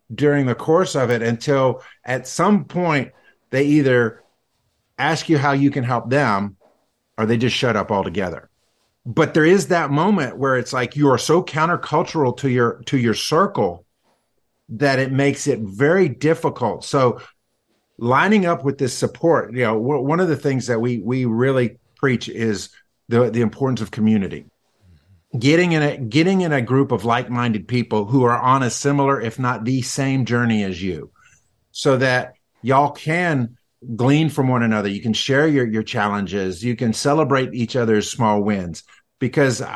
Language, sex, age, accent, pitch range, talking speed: English, male, 50-69, American, 110-140 Hz, 170 wpm